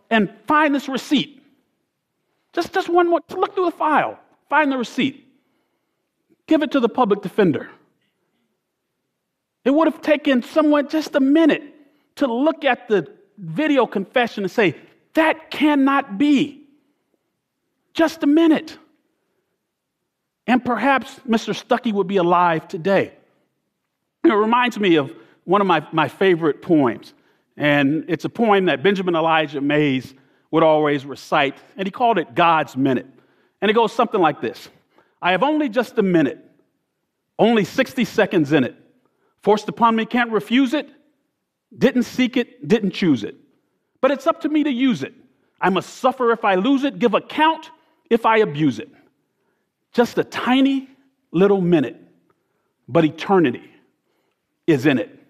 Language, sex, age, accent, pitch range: Korean, male, 40-59, American, 195-290 Hz